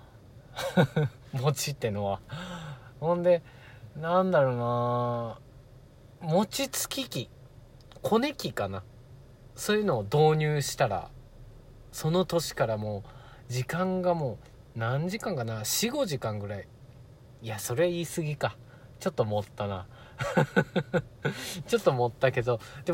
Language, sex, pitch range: Japanese, male, 115-160 Hz